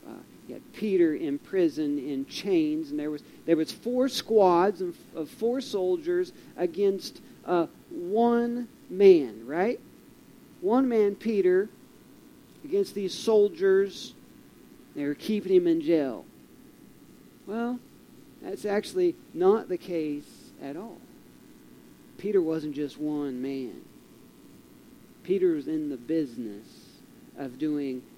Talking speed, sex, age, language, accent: 115 wpm, male, 40-59, English, American